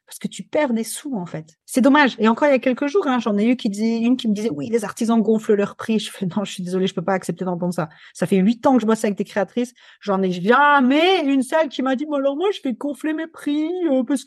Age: 40-59